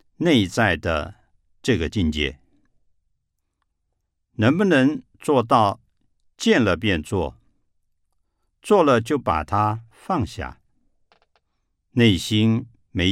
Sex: male